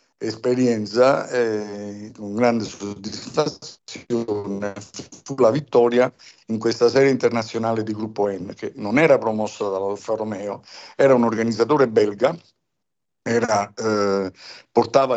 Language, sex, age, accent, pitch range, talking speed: Italian, male, 60-79, native, 110-130 Hz, 110 wpm